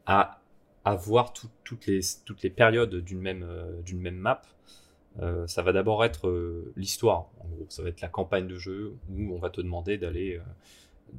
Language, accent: French, French